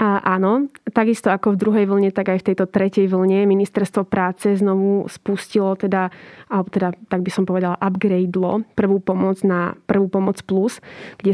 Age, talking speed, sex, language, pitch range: 20-39, 165 wpm, female, Slovak, 190-215 Hz